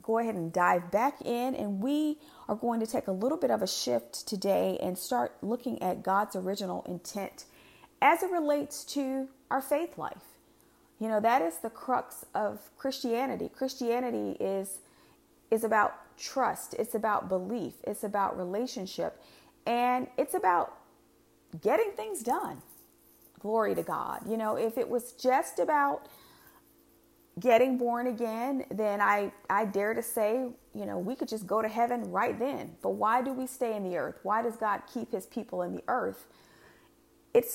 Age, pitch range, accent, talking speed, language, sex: 40-59, 195-255 Hz, American, 170 wpm, English, female